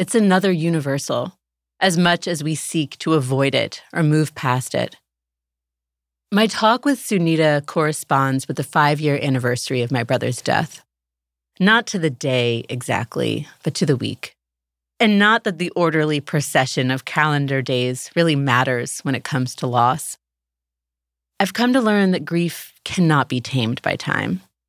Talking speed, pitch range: 155 wpm, 125-170 Hz